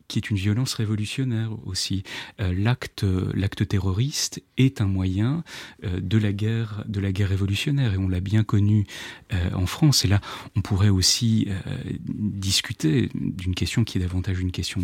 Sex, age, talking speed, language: male, 30-49, 175 wpm, French